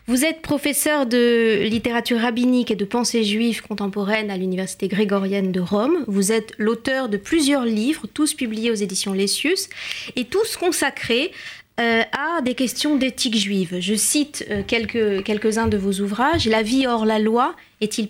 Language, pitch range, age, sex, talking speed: French, 205-265 Hz, 30-49, female, 160 wpm